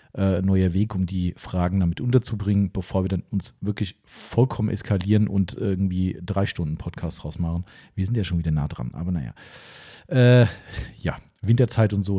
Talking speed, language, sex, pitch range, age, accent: 170 wpm, German, male, 95-125 Hz, 40-59, German